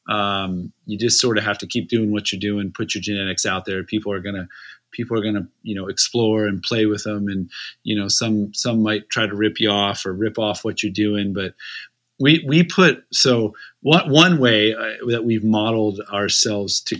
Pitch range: 100-120 Hz